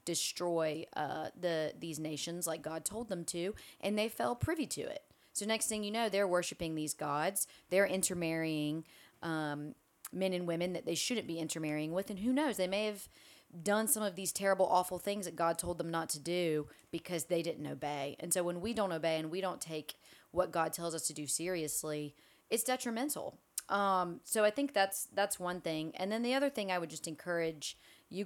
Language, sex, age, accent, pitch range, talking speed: English, female, 30-49, American, 160-195 Hz, 210 wpm